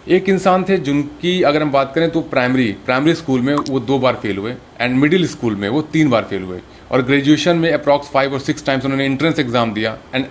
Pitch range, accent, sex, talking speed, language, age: 115-155 Hz, native, male, 235 wpm, Hindi, 30-49